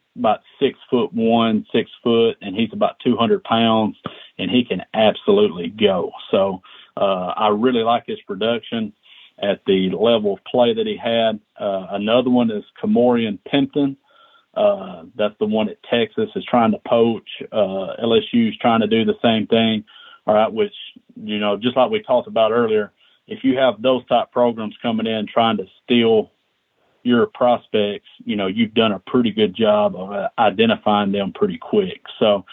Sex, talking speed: male, 175 wpm